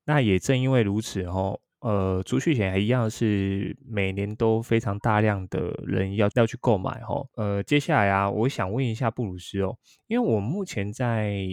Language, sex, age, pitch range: Chinese, male, 20-39, 100-120 Hz